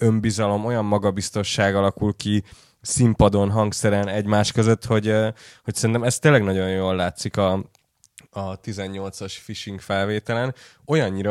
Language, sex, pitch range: Hungarian, male, 95-115 Hz